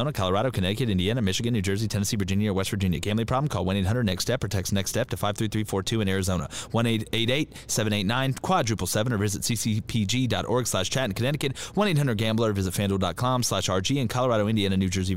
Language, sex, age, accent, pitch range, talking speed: English, male, 30-49, American, 110-140 Hz, 180 wpm